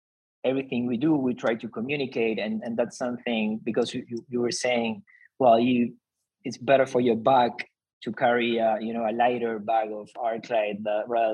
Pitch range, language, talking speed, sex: 115-135 Hz, English, 180 wpm, male